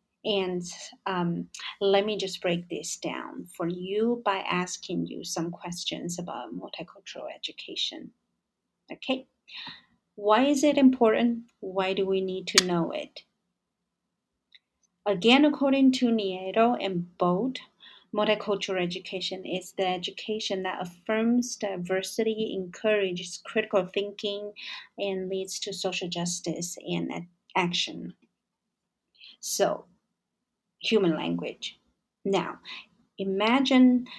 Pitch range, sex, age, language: 185-225 Hz, female, 30-49, Chinese